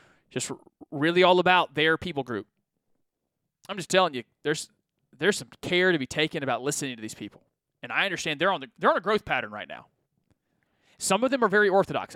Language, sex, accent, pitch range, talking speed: English, male, American, 150-195 Hz, 205 wpm